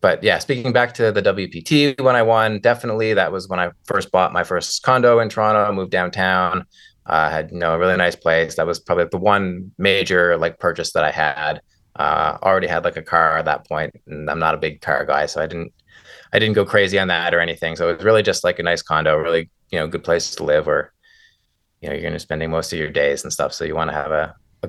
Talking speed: 265 wpm